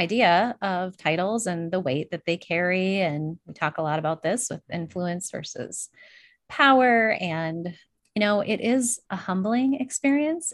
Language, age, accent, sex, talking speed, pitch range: English, 30-49, American, female, 160 wpm, 175-230 Hz